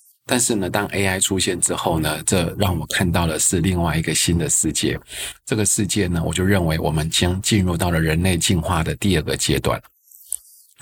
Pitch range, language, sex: 80-100 Hz, Chinese, male